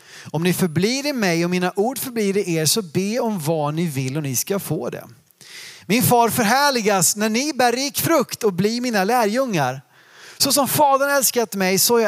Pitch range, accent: 175-235 Hz, native